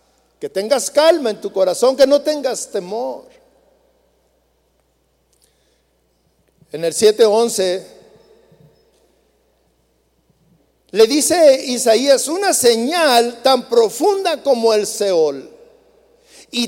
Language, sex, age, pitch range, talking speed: Spanish, male, 60-79, 205-340 Hz, 85 wpm